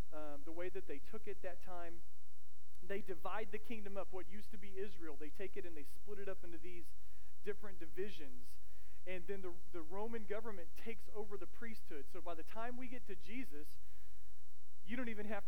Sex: male